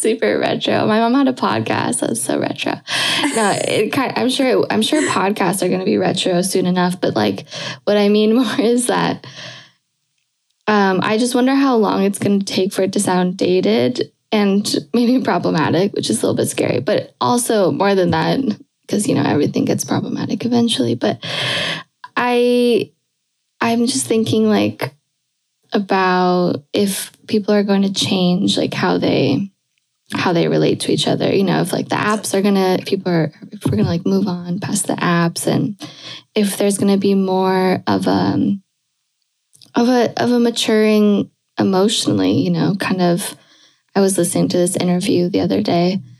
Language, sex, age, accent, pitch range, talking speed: English, female, 10-29, American, 175-220 Hz, 180 wpm